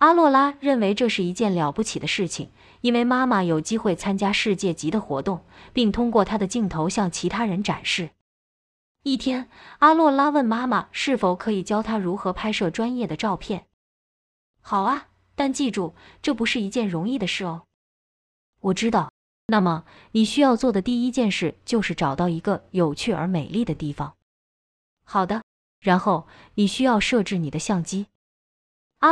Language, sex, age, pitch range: Chinese, female, 20-39, 175-240 Hz